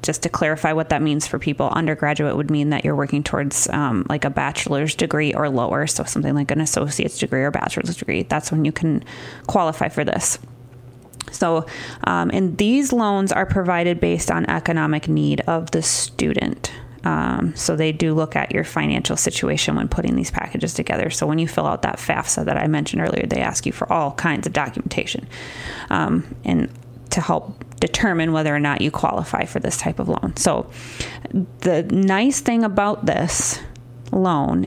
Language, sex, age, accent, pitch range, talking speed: English, female, 20-39, American, 145-185 Hz, 185 wpm